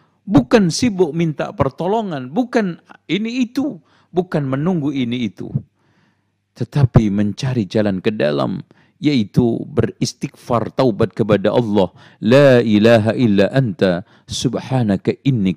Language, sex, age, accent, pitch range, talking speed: Indonesian, male, 50-69, native, 110-180 Hz, 105 wpm